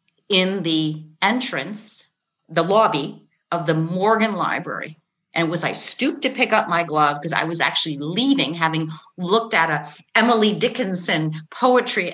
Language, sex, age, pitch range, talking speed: English, female, 40-59, 170-220 Hz, 150 wpm